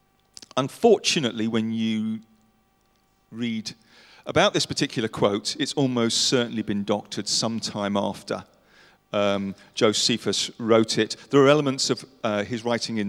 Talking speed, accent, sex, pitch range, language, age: 125 wpm, British, male, 110-150 Hz, English, 40-59